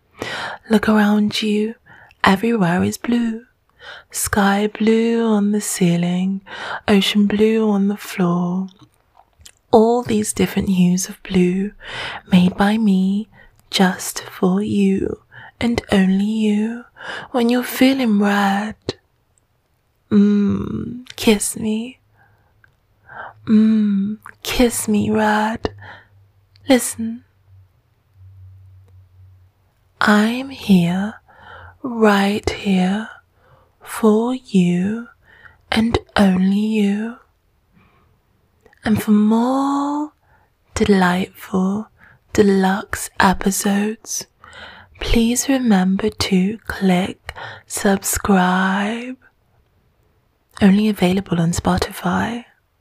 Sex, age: female, 20-39